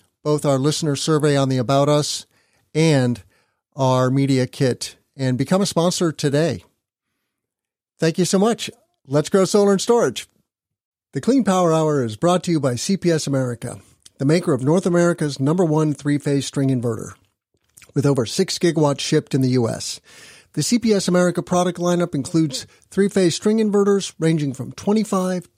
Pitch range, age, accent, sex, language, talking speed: 135-190 Hz, 50-69, American, male, English, 165 wpm